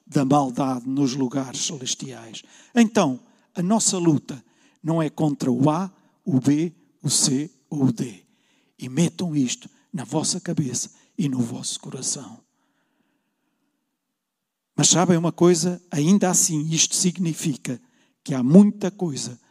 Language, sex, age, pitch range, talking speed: Portuguese, male, 50-69, 155-240 Hz, 130 wpm